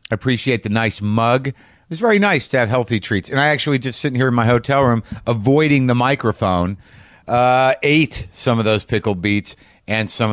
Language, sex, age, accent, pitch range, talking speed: English, male, 50-69, American, 105-145 Hz, 205 wpm